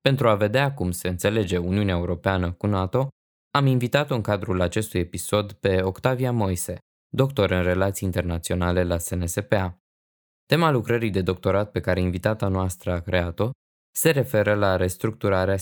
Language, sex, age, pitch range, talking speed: Romanian, male, 20-39, 90-105 Hz, 150 wpm